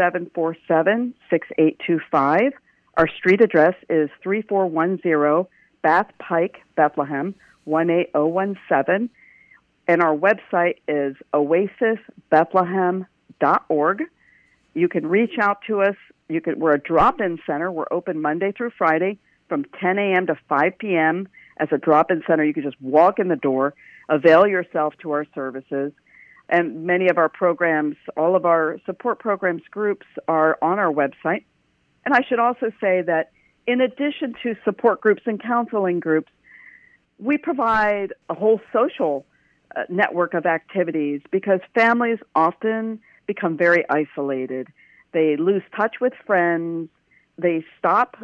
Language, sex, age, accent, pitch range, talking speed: English, female, 50-69, American, 160-205 Hz, 130 wpm